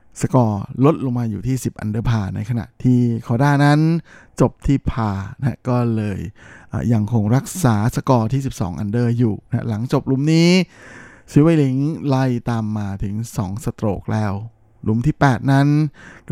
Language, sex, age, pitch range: Thai, male, 20-39, 110-135 Hz